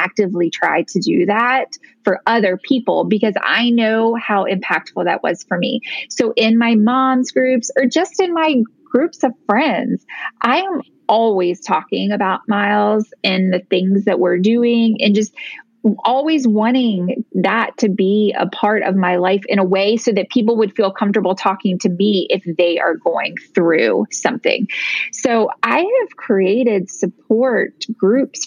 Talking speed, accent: 160 wpm, American